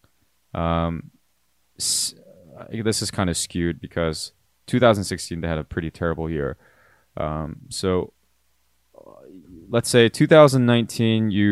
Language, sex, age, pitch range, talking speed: English, male, 20-39, 80-110 Hz, 100 wpm